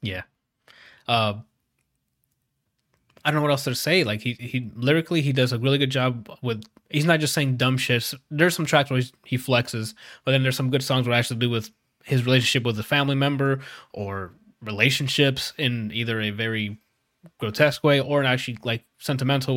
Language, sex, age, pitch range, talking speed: English, male, 20-39, 120-145 Hz, 195 wpm